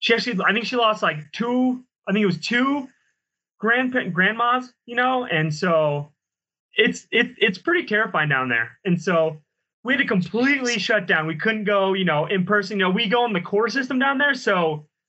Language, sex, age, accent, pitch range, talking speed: English, male, 20-39, American, 170-225 Hz, 205 wpm